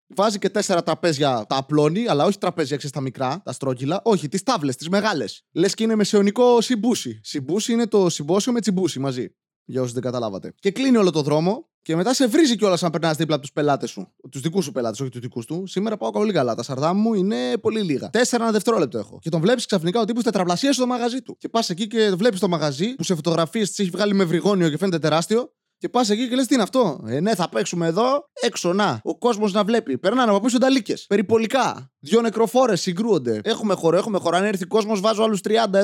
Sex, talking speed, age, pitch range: male, 215 wpm, 20-39, 150-220 Hz